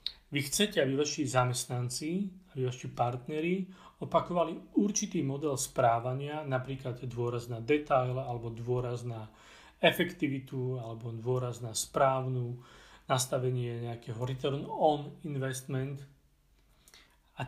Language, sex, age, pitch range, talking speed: Czech, male, 40-59, 120-150 Hz, 100 wpm